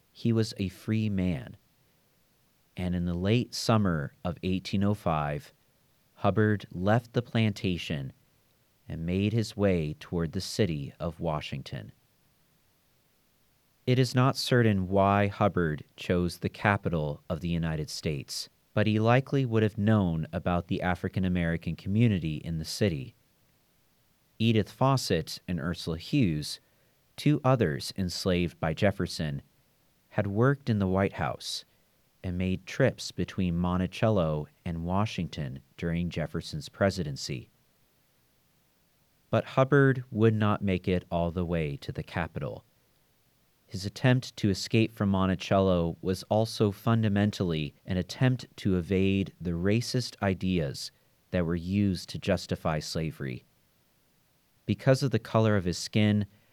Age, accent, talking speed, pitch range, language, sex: 40-59, American, 125 wpm, 90-115 Hz, English, male